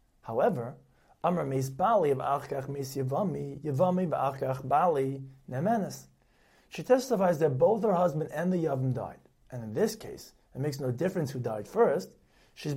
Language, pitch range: English, 130-185 Hz